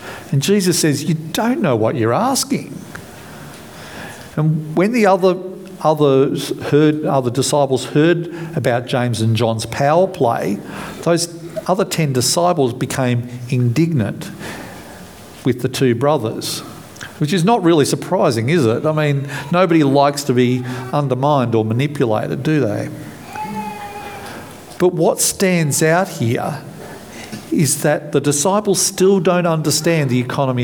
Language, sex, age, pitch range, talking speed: English, male, 50-69, 125-170 Hz, 130 wpm